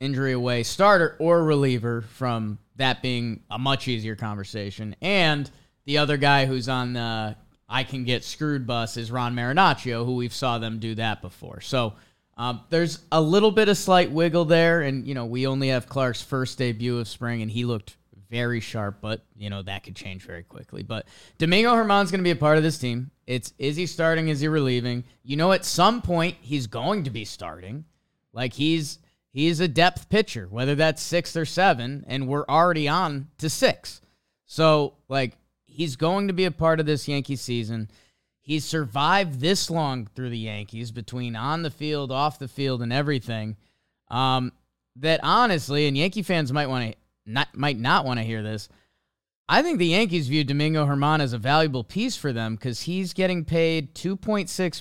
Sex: male